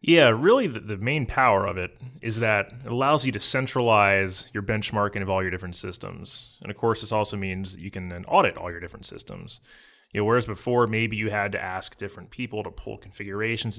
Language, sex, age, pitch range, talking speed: English, male, 30-49, 95-115 Hz, 220 wpm